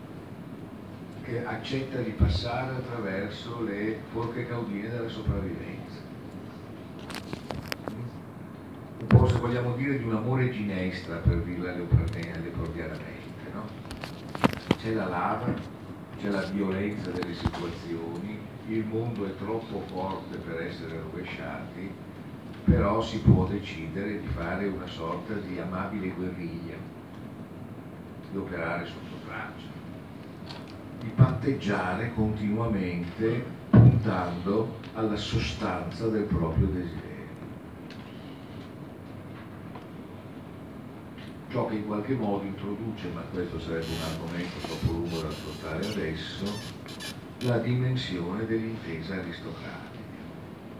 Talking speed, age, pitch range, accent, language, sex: 100 wpm, 50-69, 85-115 Hz, native, Italian, male